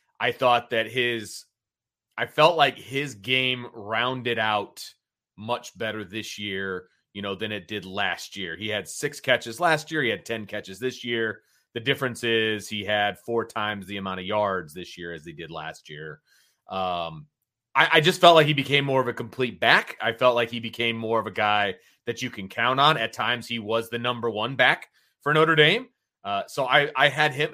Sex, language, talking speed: male, English, 210 wpm